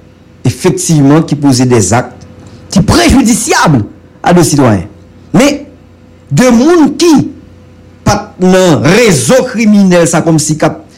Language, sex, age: English, male, 50-69